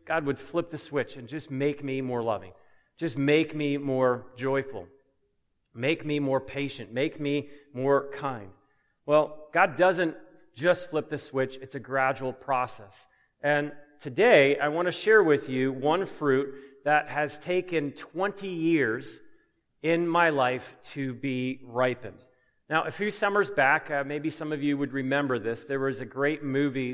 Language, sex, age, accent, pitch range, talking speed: English, male, 40-59, American, 135-170 Hz, 165 wpm